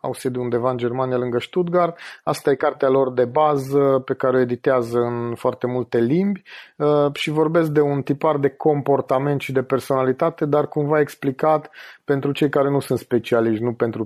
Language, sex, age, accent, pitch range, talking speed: Romanian, male, 30-49, native, 120-145 Hz, 180 wpm